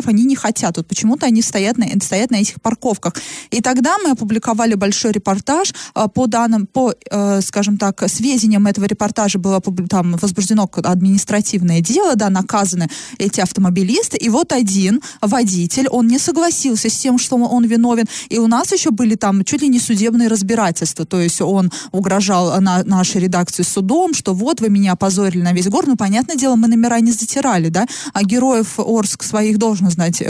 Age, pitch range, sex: 20-39, 190-235 Hz, female